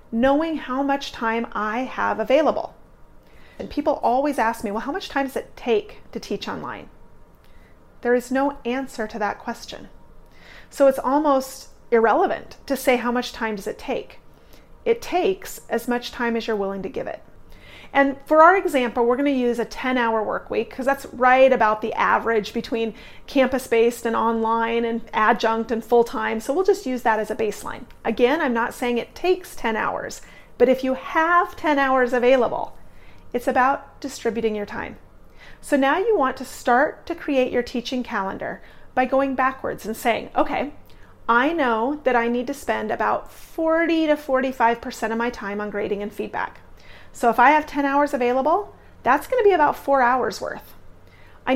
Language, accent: English, American